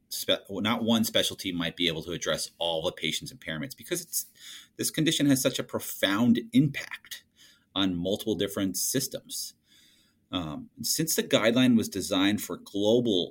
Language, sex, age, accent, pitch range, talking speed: English, male, 30-49, American, 95-140 Hz, 150 wpm